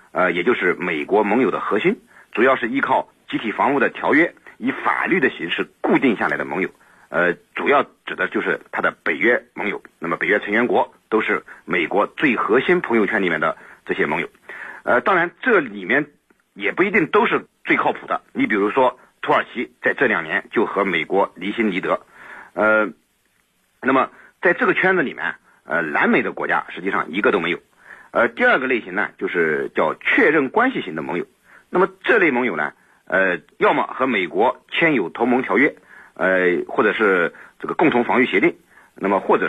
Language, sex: Chinese, male